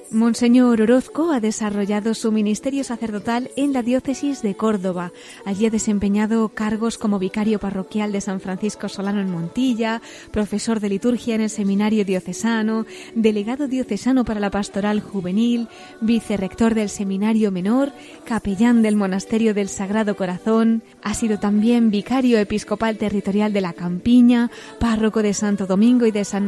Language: Spanish